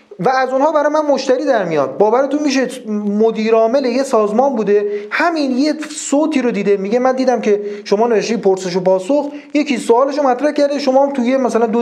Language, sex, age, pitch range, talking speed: Persian, male, 40-59, 195-265 Hz, 185 wpm